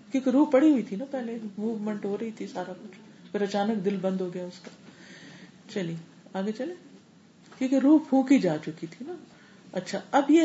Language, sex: Urdu, female